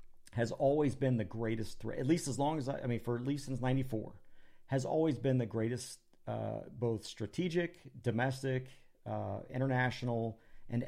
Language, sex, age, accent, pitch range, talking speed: English, male, 40-59, American, 110-140 Hz, 170 wpm